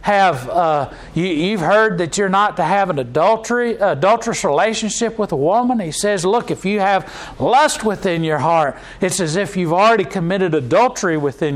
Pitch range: 175-220 Hz